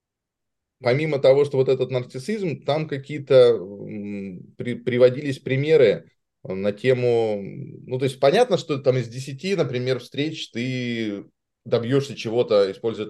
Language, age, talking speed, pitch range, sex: Russian, 20-39, 120 wpm, 105-160 Hz, male